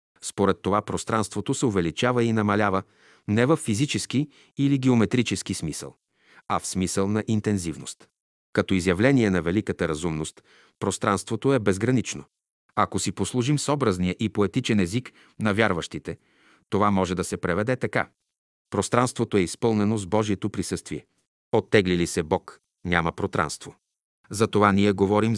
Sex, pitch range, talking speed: male, 95-120 Hz, 130 wpm